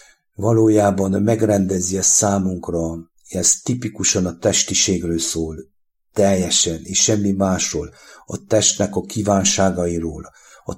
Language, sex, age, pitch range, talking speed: English, male, 60-79, 90-105 Hz, 100 wpm